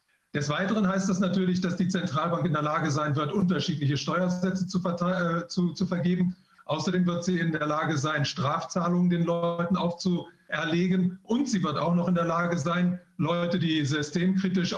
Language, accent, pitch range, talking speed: Russian, German, 150-180 Hz, 170 wpm